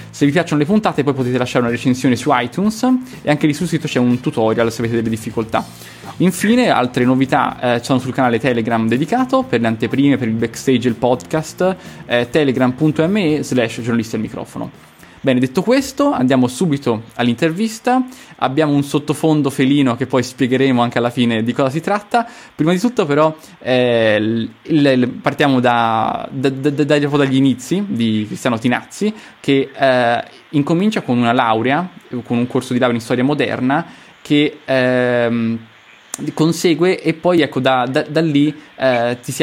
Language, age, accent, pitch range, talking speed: Italian, 20-39, native, 120-150 Hz, 160 wpm